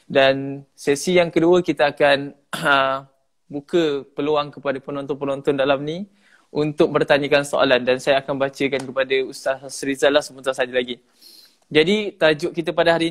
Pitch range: 140-165 Hz